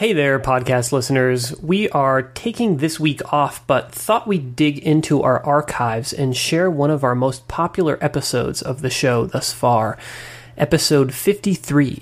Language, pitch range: English, 125-150 Hz